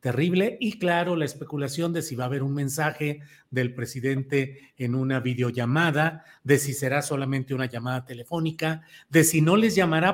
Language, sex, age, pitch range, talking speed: Spanish, male, 40-59, 135-185 Hz, 170 wpm